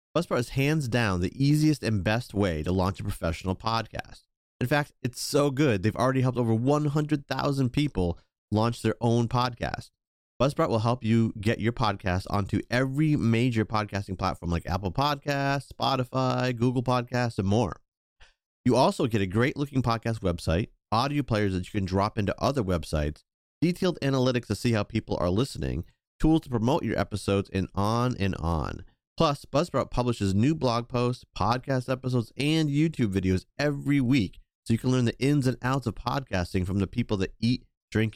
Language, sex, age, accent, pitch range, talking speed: English, male, 30-49, American, 100-135 Hz, 175 wpm